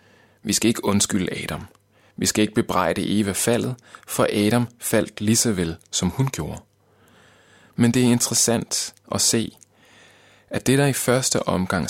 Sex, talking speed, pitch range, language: male, 160 wpm, 100-115 Hz, Danish